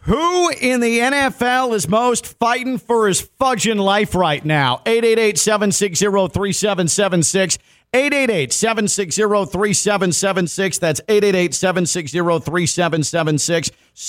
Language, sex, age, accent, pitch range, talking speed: English, male, 40-59, American, 155-205 Hz, 80 wpm